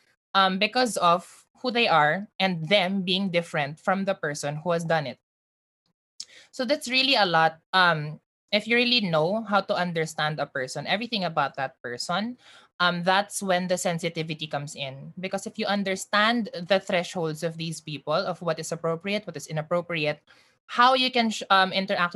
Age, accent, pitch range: 20-39, native, 160-200 Hz